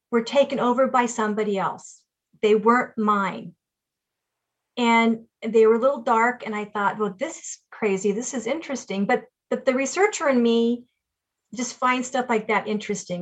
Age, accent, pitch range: 40-59, American, 210-250 Hz